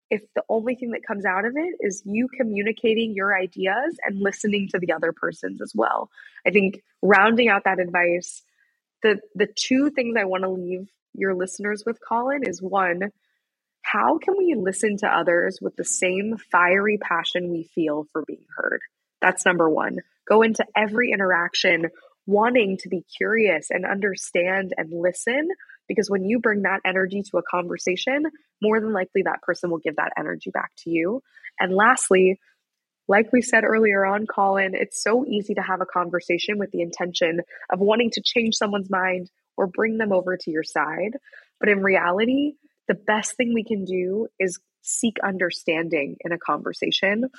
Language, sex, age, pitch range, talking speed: English, female, 20-39, 180-225 Hz, 175 wpm